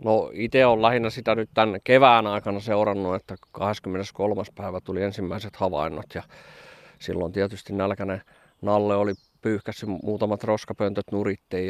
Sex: male